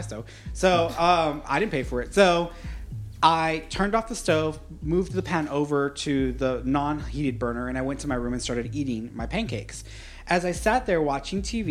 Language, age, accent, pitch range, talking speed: English, 30-49, American, 130-175 Hz, 200 wpm